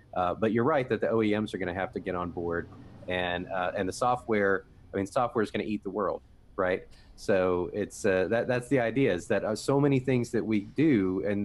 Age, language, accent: 30-49, English, American